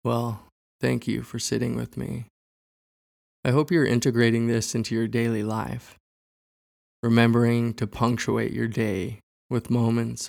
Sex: male